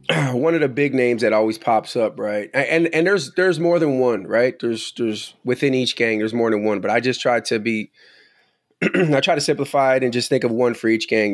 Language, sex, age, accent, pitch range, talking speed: English, male, 20-39, American, 105-120 Hz, 245 wpm